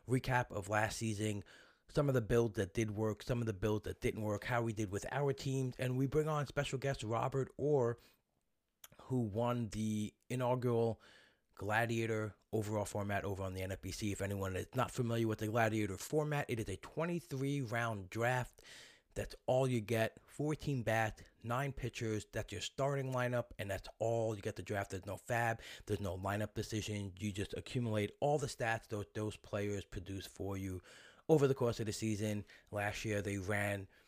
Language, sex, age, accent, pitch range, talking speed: English, male, 30-49, American, 100-125 Hz, 185 wpm